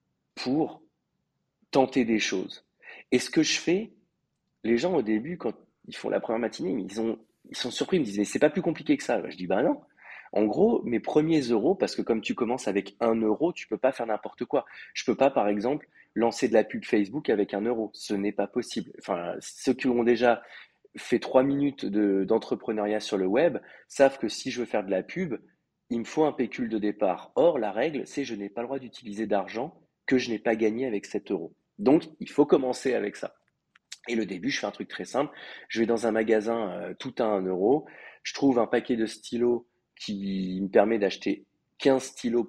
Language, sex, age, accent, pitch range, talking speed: French, male, 30-49, French, 105-130 Hz, 230 wpm